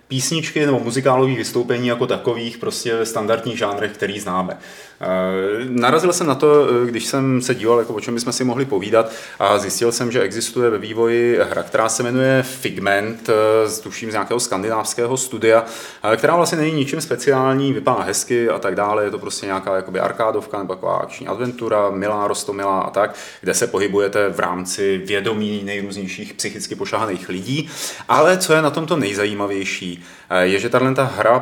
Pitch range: 105-130 Hz